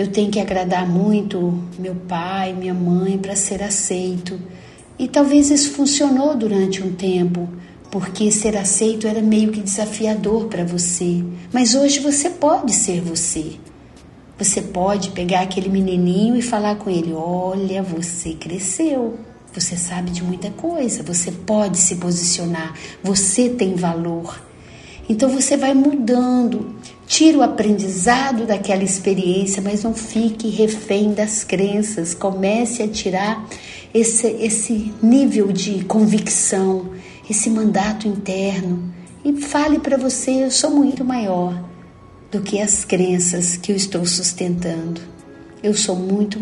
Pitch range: 180-220 Hz